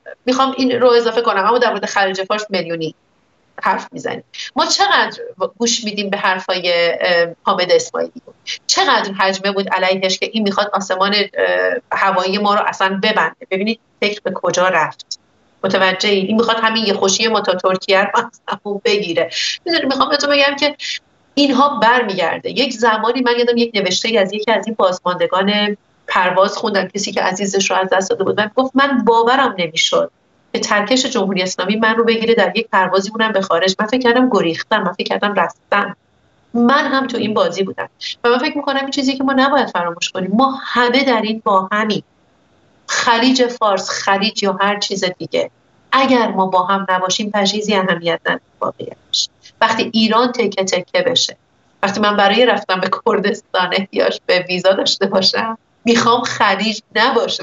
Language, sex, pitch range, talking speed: Persian, female, 195-245 Hz, 165 wpm